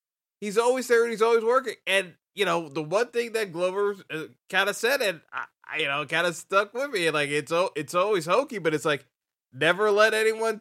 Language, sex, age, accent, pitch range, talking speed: English, male, 20-39, American, 165-220 Hz, 225 wpm